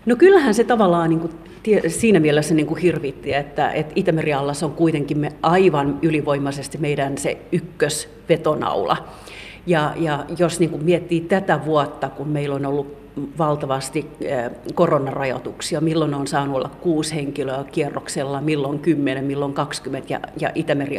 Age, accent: 40-59, native